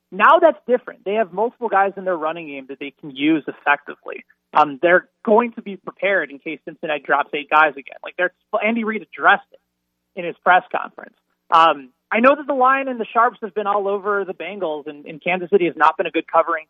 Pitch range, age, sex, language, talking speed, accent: 150-205 Hz, 30-49, male, English, 230 wpm, American